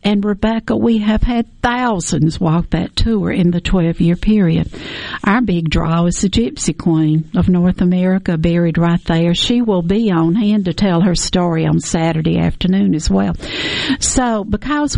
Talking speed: 170 wpm